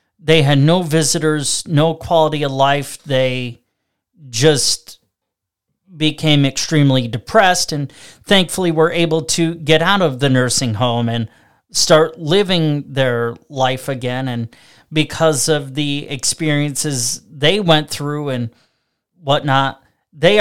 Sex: male